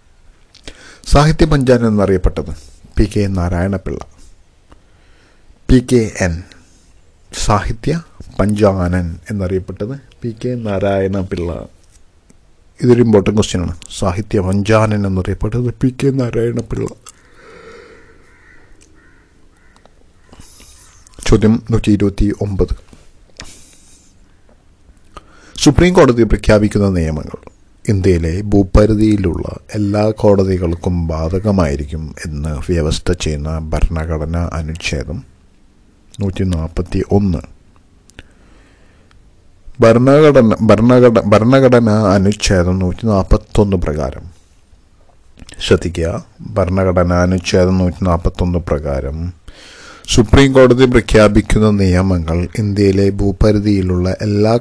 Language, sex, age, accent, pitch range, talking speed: Malayalam, male, 50-69, native, 85-105 Hz, 70 wpm